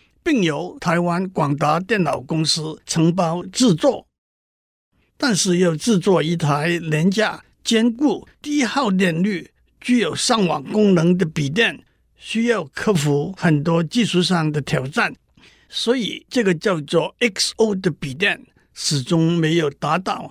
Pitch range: 160-205 Hz